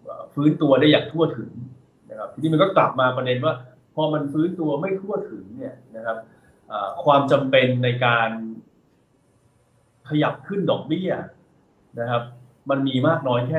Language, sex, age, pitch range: Thai, male, 20-39, 115-150 Hz